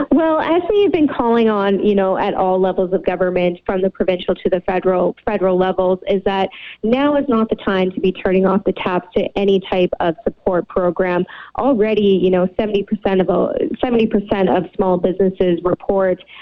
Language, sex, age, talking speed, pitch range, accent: English, female, 20-39, 185 wpm, 185-205 Hz, American